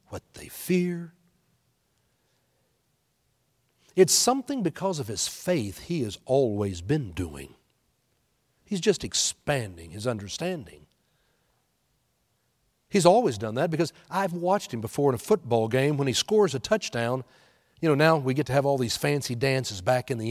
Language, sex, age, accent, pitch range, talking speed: English, male, 60-79, American, 120-160 Hz, 150 wpm